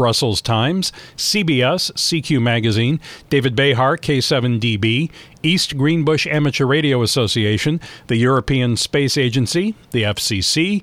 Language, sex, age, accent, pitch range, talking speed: English, male, 40-59, American, 125-160 Hz, 105 wpm